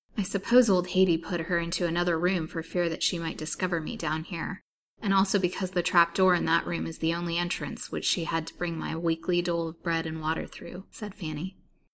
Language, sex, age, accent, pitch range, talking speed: English, female, 20-39, American, 165-200 Hz, 230 wpm